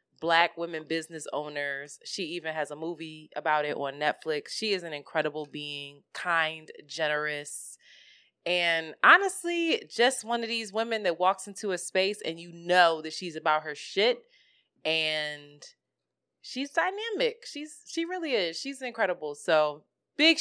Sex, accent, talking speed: female, American, 150 wpm